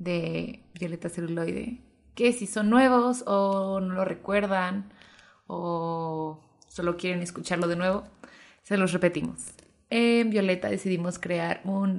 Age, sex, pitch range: 20-39, female, 175-230 Hz